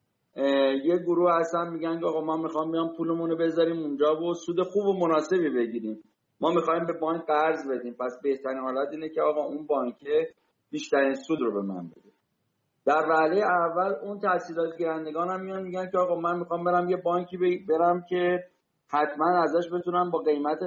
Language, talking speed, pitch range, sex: Persian, 175 wpm, 135-175 Hz, male